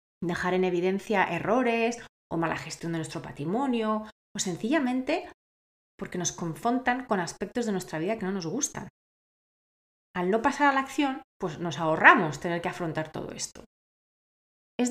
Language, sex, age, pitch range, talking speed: Spanish, female, 30-49, 170-235 Hz, 155 wpm